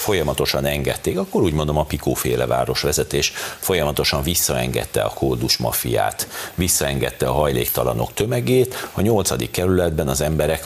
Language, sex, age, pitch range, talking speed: Hungarian, male, 60-79, 65-100 Hz, 125 wpm